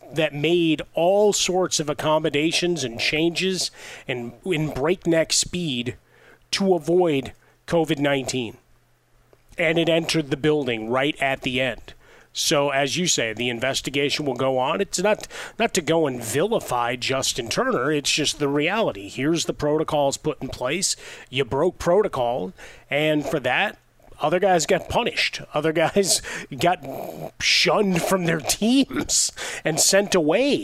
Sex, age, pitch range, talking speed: male, 30-49, 130-170 Hz, 140 wpm